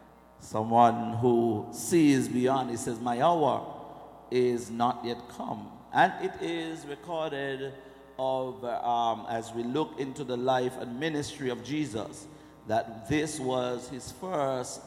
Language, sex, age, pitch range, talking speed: English, male, 50-69, 125-145 Hz, 135 wpm